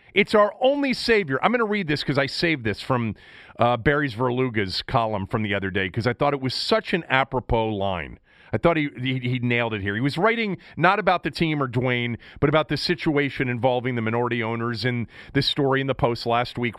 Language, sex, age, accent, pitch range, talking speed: English, male, 40-59, American, 115-165 Hz, 230 wpm